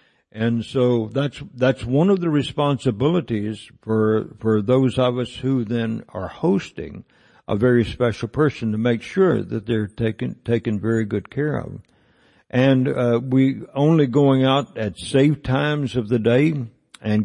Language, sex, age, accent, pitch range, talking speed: English, male, 60-79, American, 115-135 Hz, 160 wpm